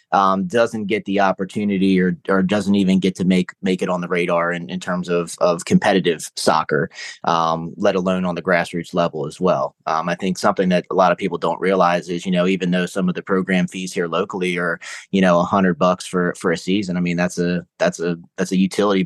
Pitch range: 85-95 Hz